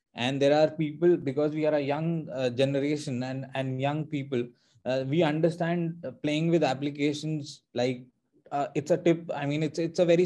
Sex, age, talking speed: male, 20-39, 185 wpm